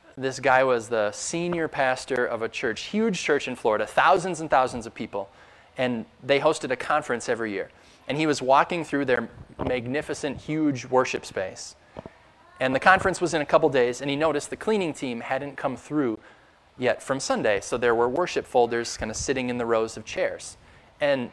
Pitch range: 115-165 Hz